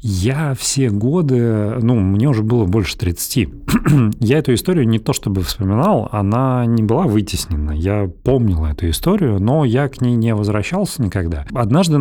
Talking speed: 165 wpm